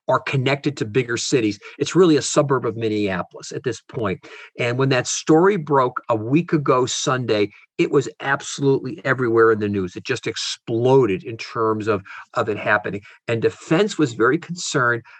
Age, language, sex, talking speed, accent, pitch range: 50-69, English, male, 180 wpm, American, 115-145 Hz